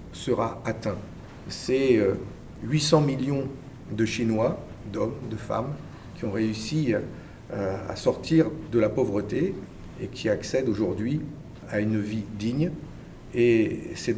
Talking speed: 120 wpm